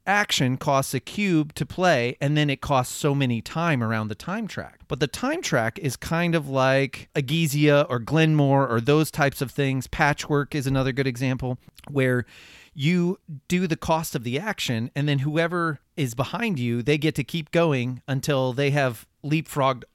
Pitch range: 120-150 Hz